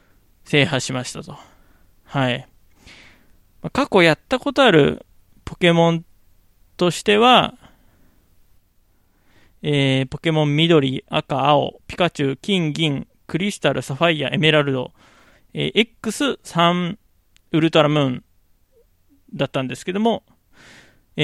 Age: 20-39